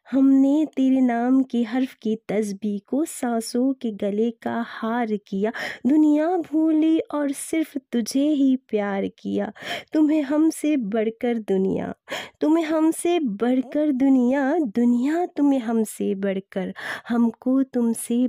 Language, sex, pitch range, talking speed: Hindi, female, 220-285 Hz, 120 wpm